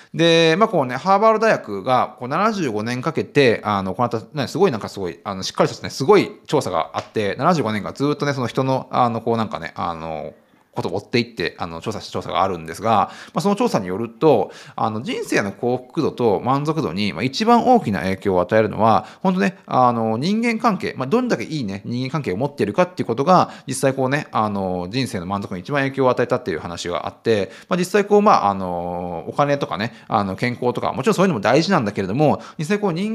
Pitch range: 110-185 Hz